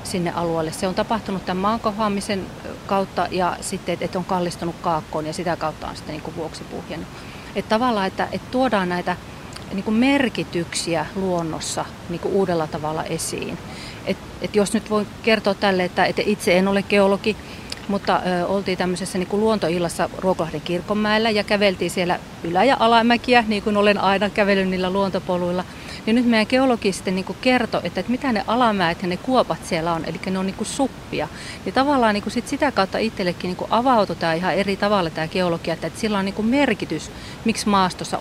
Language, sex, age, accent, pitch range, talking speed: Finnish, female, 40-59, native, 170-210 Hz, 180 wpm